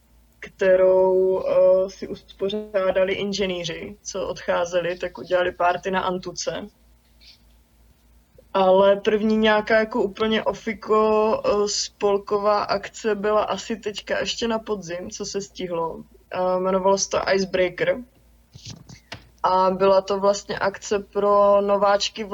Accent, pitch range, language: native, 180-200 Hz, Czech